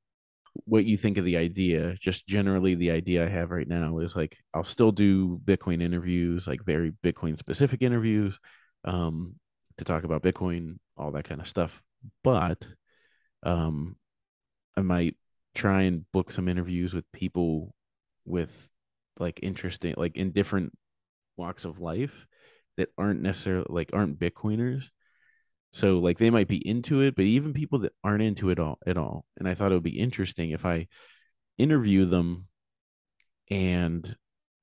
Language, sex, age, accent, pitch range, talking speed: English, male, 30-49, American, 85-100 Hz, 160 wpm